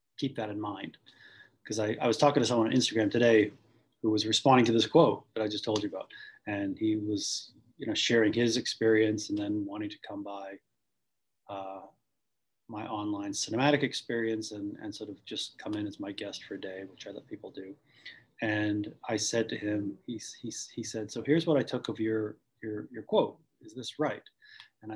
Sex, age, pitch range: male, 30-49, 110-140 Hz